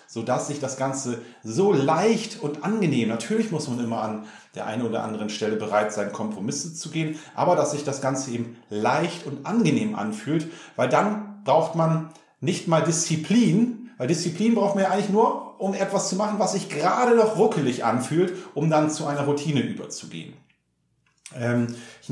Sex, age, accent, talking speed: male, 40-59, German, 175 wpm